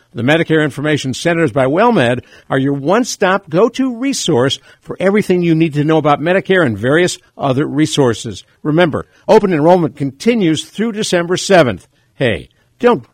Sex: male